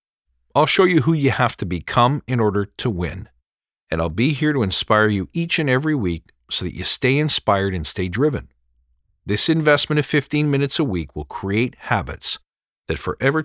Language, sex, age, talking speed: English, male, 50-69, 190 wpm